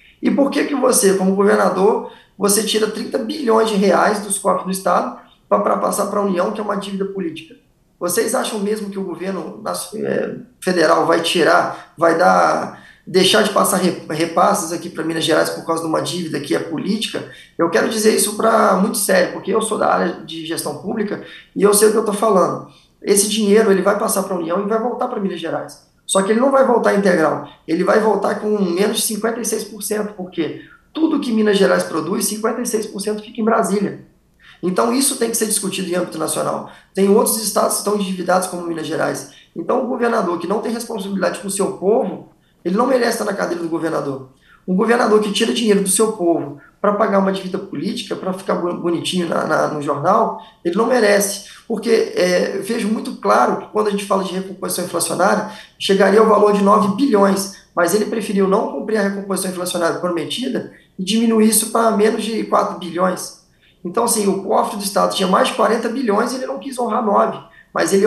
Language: Portuguese